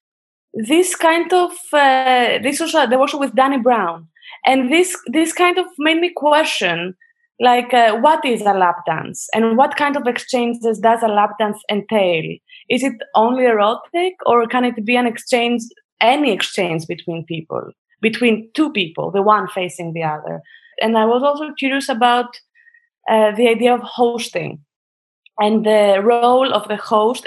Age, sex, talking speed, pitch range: 20-39, female, 165 wpm, 210-270 Hz